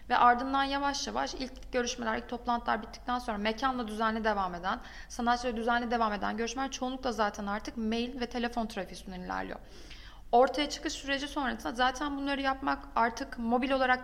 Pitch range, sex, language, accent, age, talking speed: 215-250 Hz, female, Turkish, native, 30-49, 160 wpm